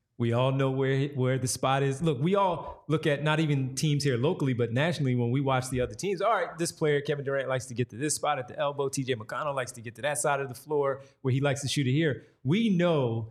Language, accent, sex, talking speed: English, American, male, 275 wpm